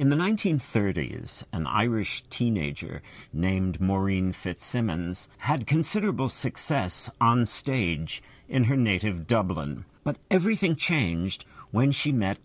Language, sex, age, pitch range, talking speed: English, male, 60-79, 95-135 Hz, 115 wpm